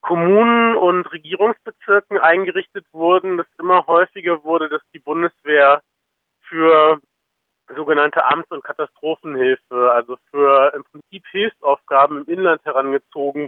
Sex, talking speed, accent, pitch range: male, 110 wpm, German, 150-190 Hz